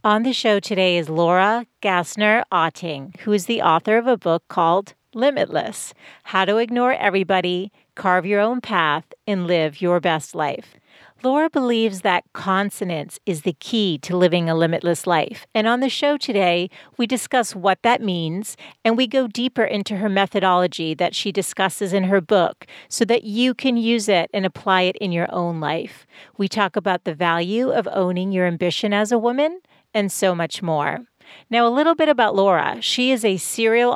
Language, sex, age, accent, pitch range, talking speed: English, female, 40-59, American, 180-230 Hz, 180 wpm